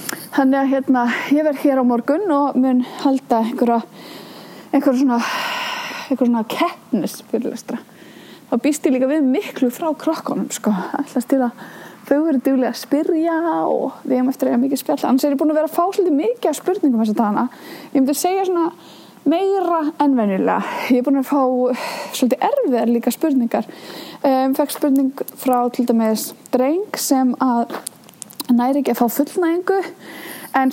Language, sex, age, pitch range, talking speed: English, female, 20-39, 245-315 Hz, 160 wpm